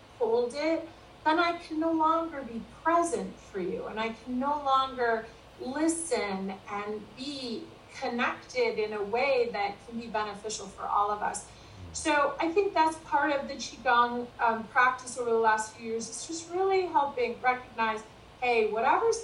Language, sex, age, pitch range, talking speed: English, female, 30-49, 215-275 Hz, 165 wpm